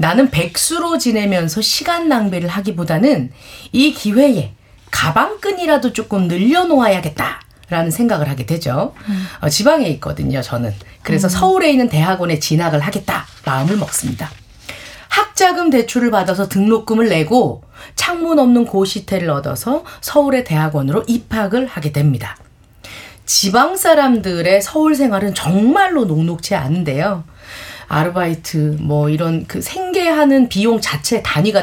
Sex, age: female, 40-59